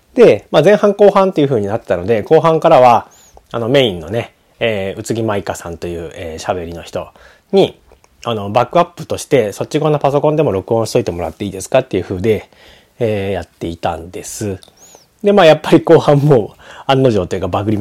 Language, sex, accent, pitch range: Japanese, male, native, 95-155 Hz